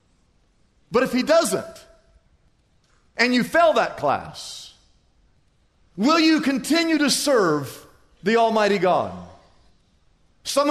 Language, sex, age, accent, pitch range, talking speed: English, male, 50-69, American, 220-310 Hz, 100 wpm